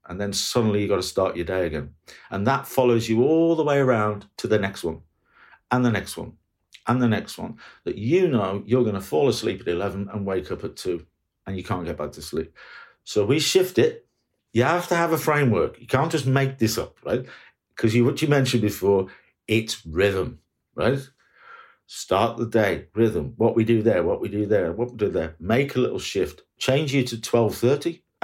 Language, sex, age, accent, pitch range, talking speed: English, male, 50-69, British, 105-130 Hz, 215 wpm